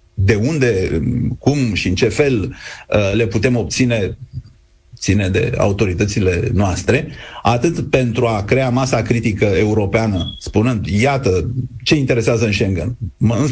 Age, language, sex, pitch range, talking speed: 40-59, Romanian, male, 105-130 Hz, 120 wpm